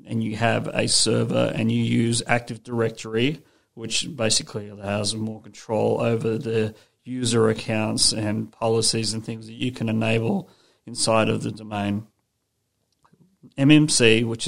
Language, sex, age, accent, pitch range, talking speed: English, male, 40-59, Australian, 110-125 Hz, 135 wpm